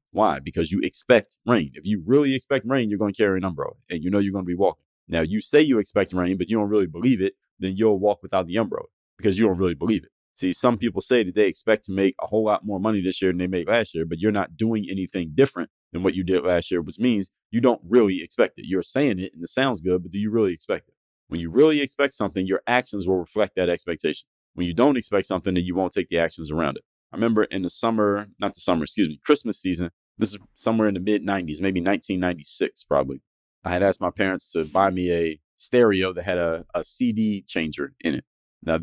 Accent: American